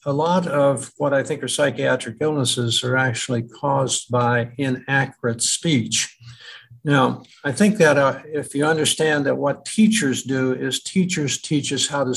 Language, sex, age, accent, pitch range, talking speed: English, male, 60-79, American, 125-145 Hz, 165 wpm